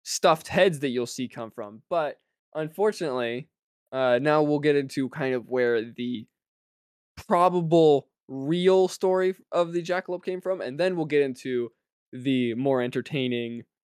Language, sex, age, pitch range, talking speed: English, male, 20-39, 120-160 Hz, 145 wpm